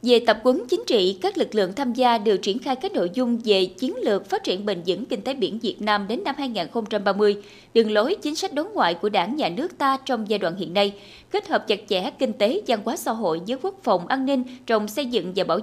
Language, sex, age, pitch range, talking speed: Vietnamese, female, 20-39, 200-280 Hz, 255 wpm